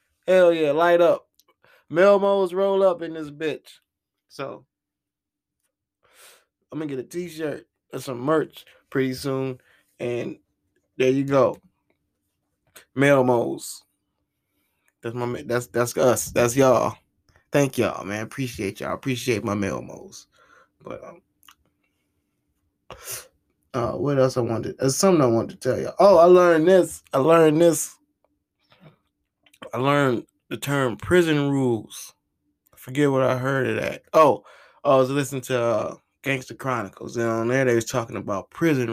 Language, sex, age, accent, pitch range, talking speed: English, male, 20-39, American, 120-175 Hz, 140 wpm